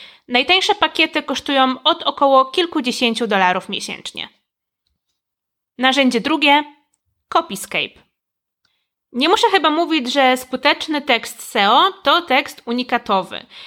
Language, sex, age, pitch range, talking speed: Polish, female, 20-39, 240-305 Hz, 95 wpm